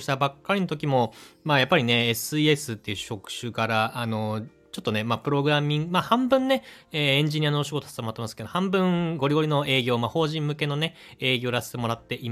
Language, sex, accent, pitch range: Japanese, male, native, 110-150 Hz